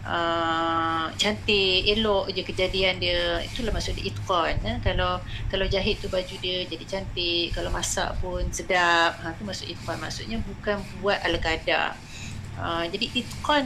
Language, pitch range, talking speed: Malay, 135-205 Hz, 145 wpm